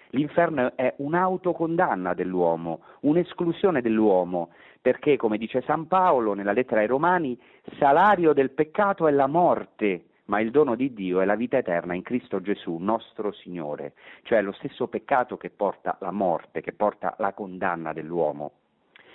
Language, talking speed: Italian, 150 wpm